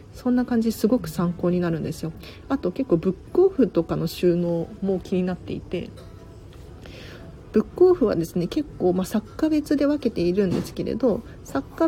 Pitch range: 170-255 Hz